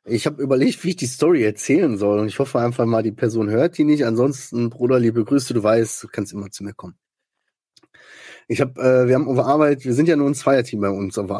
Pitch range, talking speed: 110-140 Hz, 245 wpm